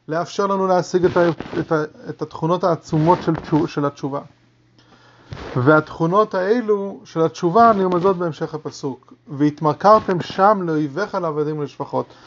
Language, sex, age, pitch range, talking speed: English, male, 30-49, 155-200 Hz, 110 wpm